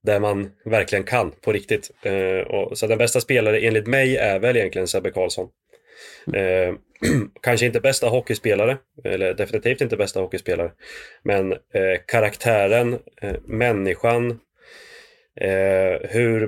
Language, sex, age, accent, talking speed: Swedish, male, 30-49, native, 110 wpm